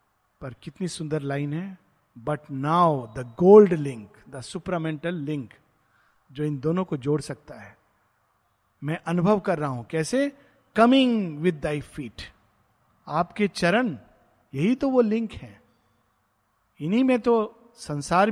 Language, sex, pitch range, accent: Hindi, male, 135-185 Hz, native